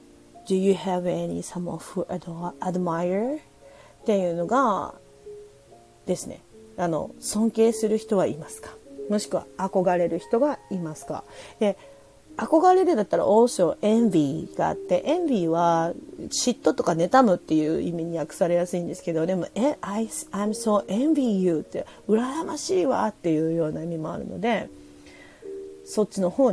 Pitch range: 175-235 Hz